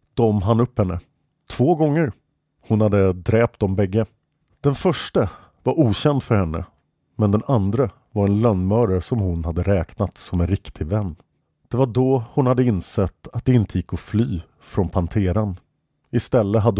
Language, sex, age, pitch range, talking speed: English, male, 50-69, 100-140 Hz, 165 wpm